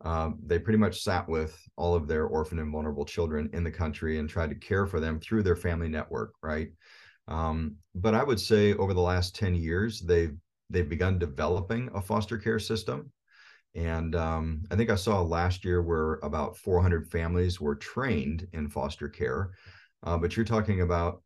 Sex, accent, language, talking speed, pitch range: male, American, English, 190 wpm, 80-95 Hz